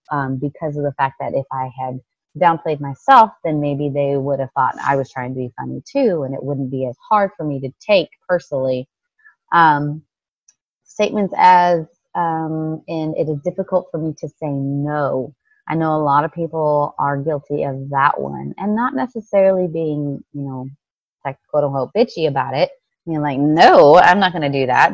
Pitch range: 140-190 Hz